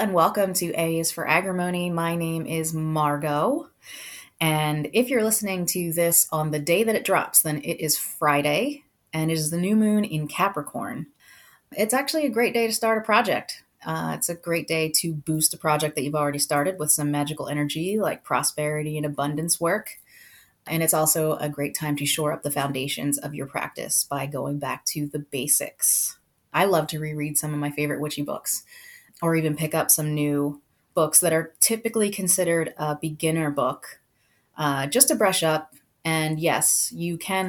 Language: English